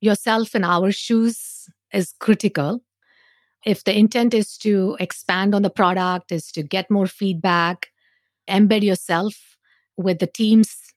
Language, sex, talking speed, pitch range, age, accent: English, female, 135 wpm, 180-225 Hz, 50-69, Indian